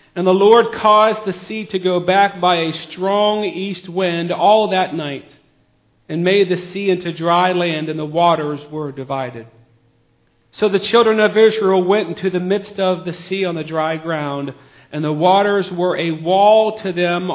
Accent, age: American, 40-59